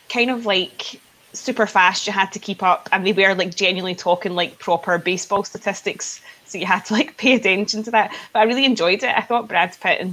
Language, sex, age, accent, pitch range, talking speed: English, female, 20-39, British, 190-220 Hz, 230 wpm